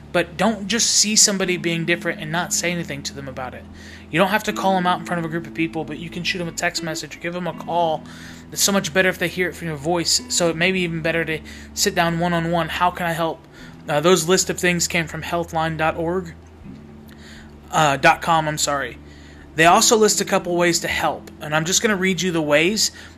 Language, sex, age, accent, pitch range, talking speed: English, male, 20-39, American, 155-185 Hz, 245 wpm